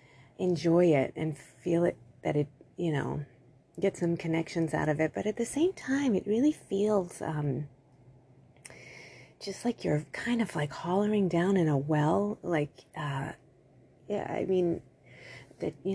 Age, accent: 30-49, American